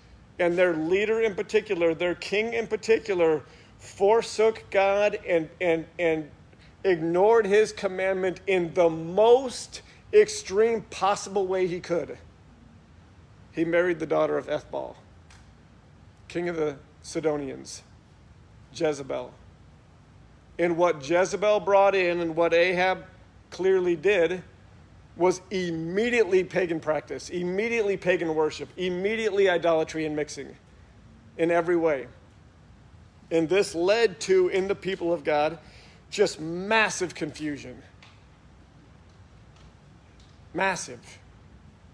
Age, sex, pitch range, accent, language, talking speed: 50-69, male, 145-195 Hz, American, English, 105 wpm